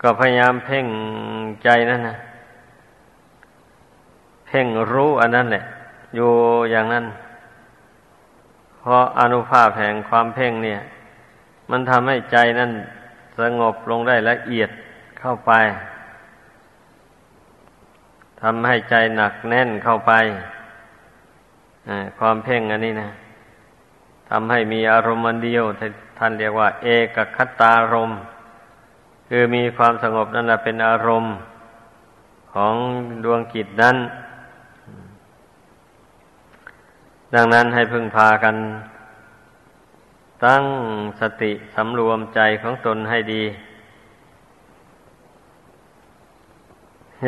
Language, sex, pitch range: Thai, male, 110-120 Hz